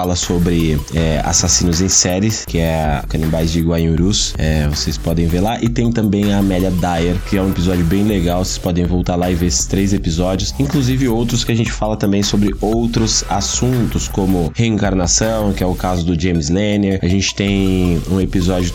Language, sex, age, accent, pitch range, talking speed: Portuguese, male, 20-39, Brazilian, 90-110 Hz, 200 wpm